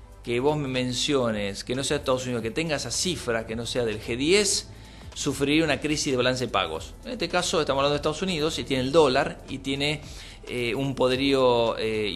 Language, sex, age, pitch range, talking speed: Spanish, male, 40-59, 115-150 Hz, 215 wpm